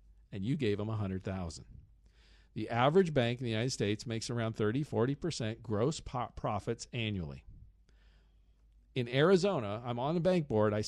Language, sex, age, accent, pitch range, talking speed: English, male, 50-69, American, 100-135 Hz, 155 wpm